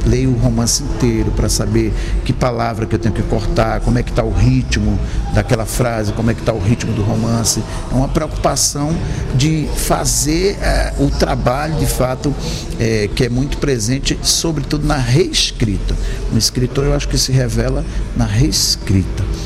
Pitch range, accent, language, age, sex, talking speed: 110-140 Hz, Brazilian, Portuguese, 50-69, male, 165 wpm